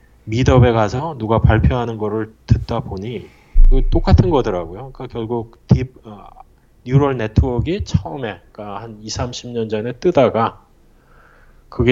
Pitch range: 100-120 Hz